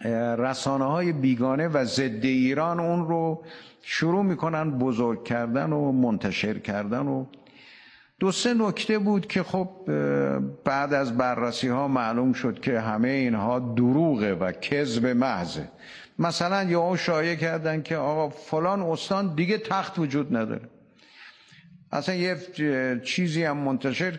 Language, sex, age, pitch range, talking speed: Persian, male, 50-69, 120-155 Hz, 130 wpm